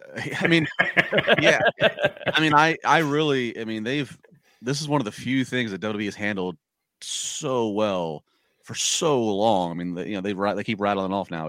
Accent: American